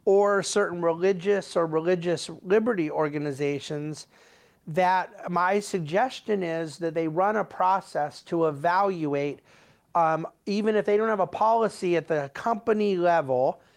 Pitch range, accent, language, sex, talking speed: 160-195 Hz, American, English, male, 130 wpm